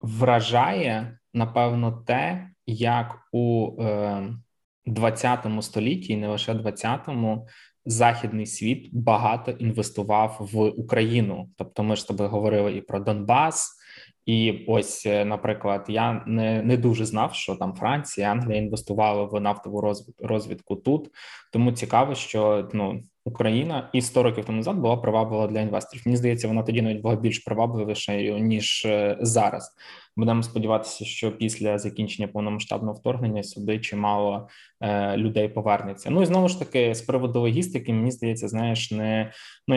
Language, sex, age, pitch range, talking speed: Ukrainian, male, 20-39, 110-125 Hz, 140 wpm